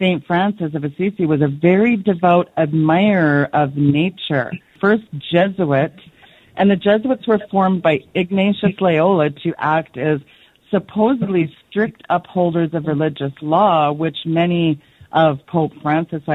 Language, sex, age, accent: English, female, 40-59, American